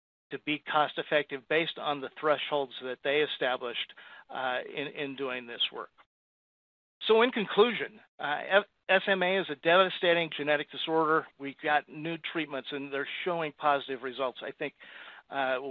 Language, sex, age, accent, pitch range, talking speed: English, male, 50-69, American, 135-155 Hz, 150 wpm